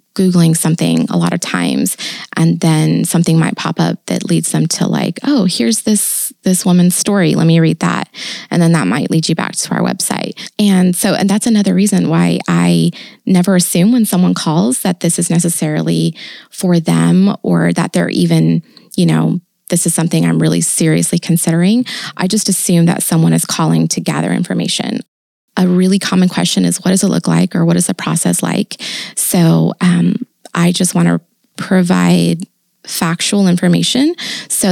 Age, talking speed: 20-39, 180 wpm